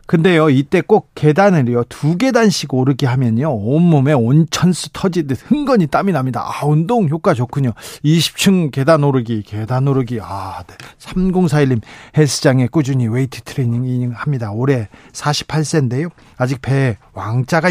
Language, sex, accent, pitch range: Korean, male, native, 125-170 Hz